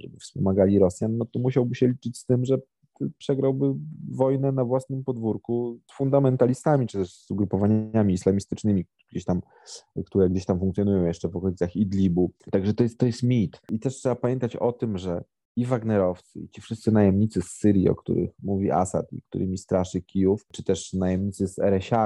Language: Polish